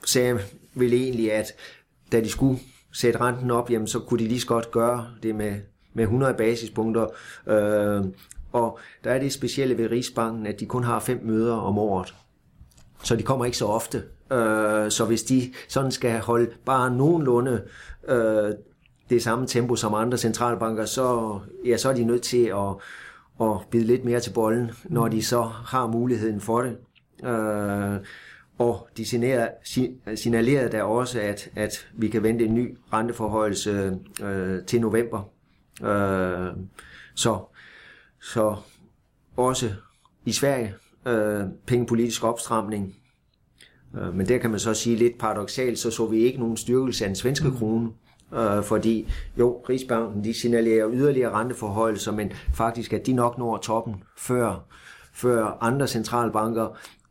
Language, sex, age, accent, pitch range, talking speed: Danish, male, 30-49, native, 110-120 Hz, 155 wpm